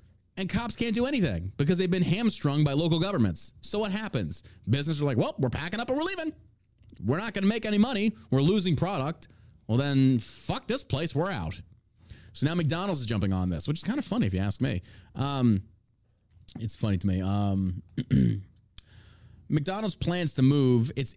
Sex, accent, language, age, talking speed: male, American, English, 30-49, 195 wpm